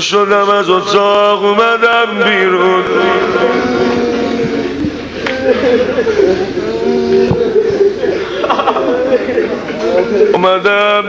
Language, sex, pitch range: Persian, male, 210-260 Hz